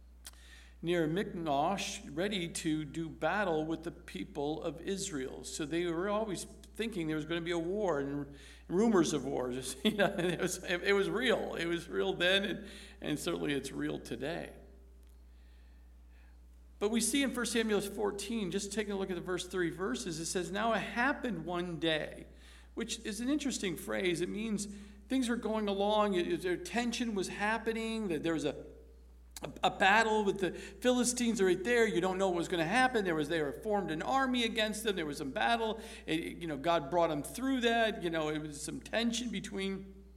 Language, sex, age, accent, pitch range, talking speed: English, male, 50-69, American, 150-205 Hz, 195 wpm